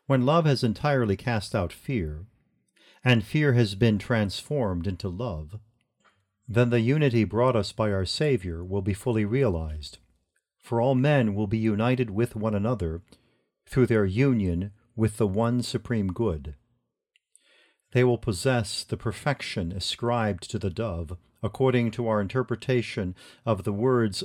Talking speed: 145 wpm